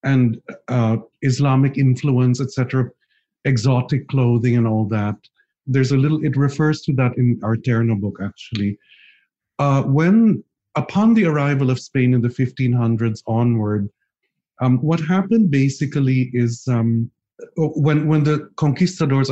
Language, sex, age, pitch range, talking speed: English, male, 50-69, 120-145 Hz, 135 wpm